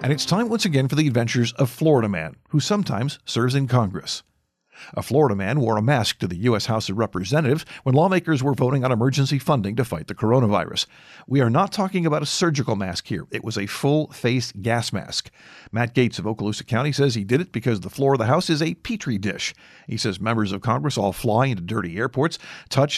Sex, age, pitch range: male, 50-69, 110-145 Hz